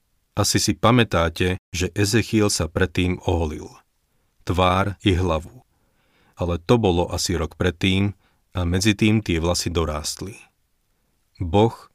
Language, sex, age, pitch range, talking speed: Slovak, male, 40-59, 90-105 Hz, 120 wpm